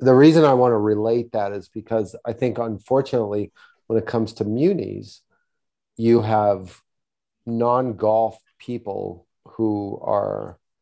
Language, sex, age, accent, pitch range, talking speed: English, male, 40-59, American, 105-115 Hz, 135 wpm